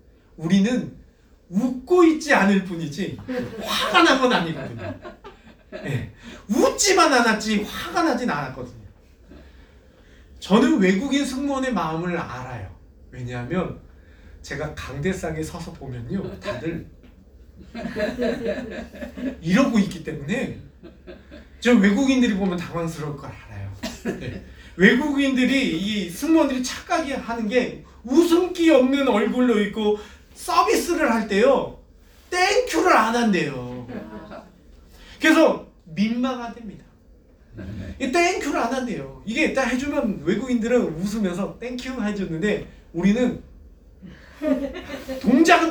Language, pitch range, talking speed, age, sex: English, 155-260 Hz, 85 wpm, 40-59, male